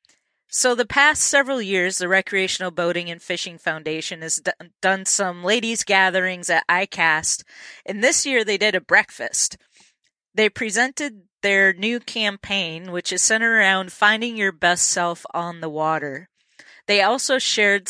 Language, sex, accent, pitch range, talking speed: English, female, American, 175-215 Hz, 150 wpm